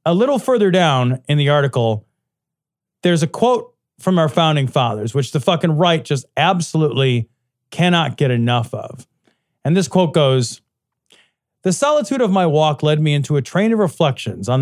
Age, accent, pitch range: 40-59, American, 135-190 Hz